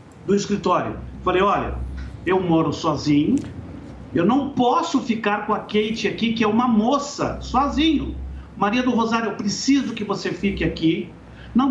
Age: 60-79